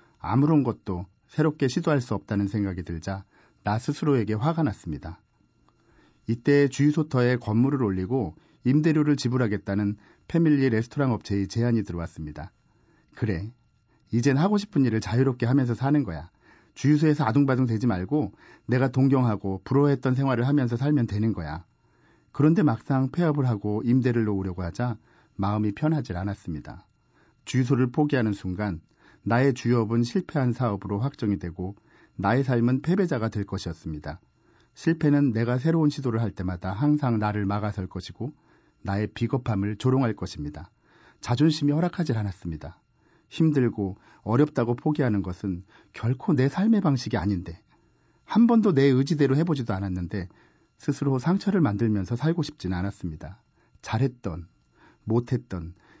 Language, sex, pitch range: Korean, male, 100-140 Hz